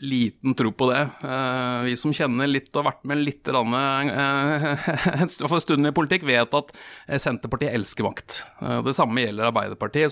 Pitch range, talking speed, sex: 120-155 Hz, 165 wpm, male